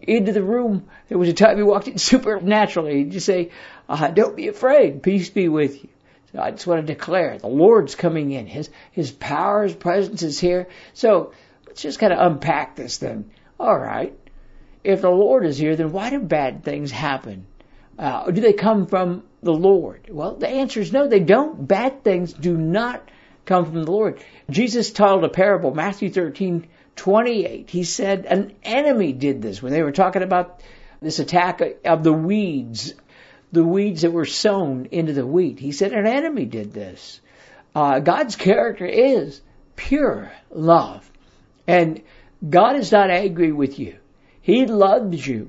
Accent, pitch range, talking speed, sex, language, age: American, 160-210 Hz, 180 wpm, male, English, 60-79